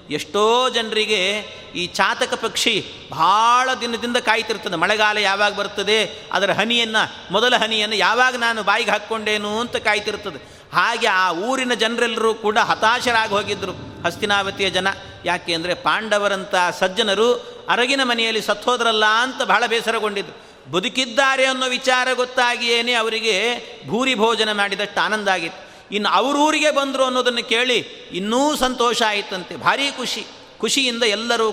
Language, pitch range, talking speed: Kannada, 195-235 Hz, 120 wpm